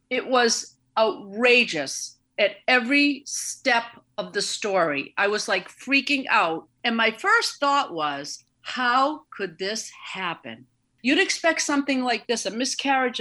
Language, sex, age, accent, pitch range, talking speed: English, female, 50-69, American, 195-265 Hz, 135 wpm